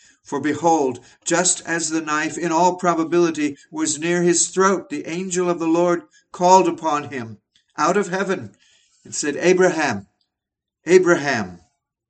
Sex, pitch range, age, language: male, 115-155 Hz, 60-79, English